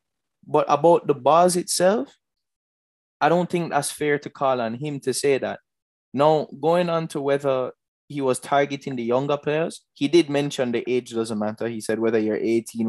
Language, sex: English, male